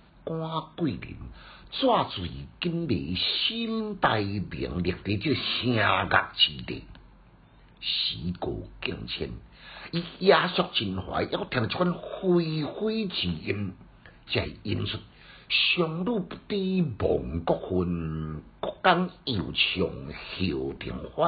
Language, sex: Chinese, male